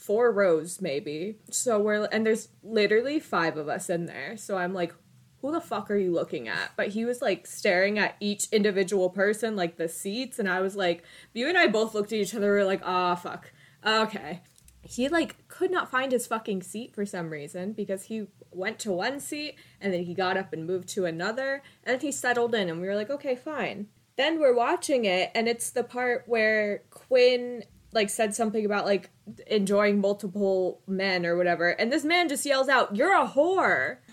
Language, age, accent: English, 20-39, American